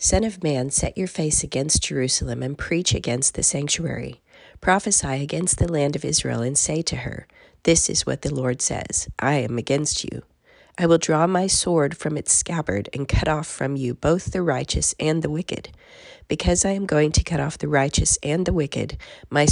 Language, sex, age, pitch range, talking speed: English, female, 40-59, 125-165 Hz, 200 wpm